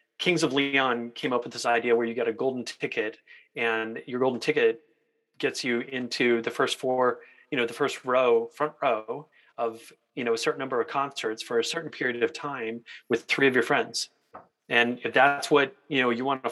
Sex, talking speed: male, 215 wpm